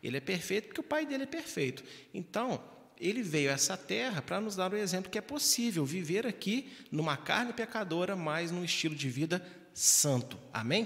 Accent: Brazilian